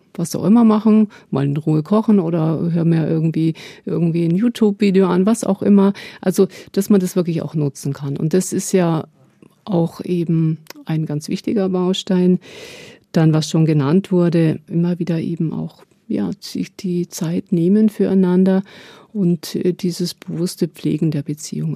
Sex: female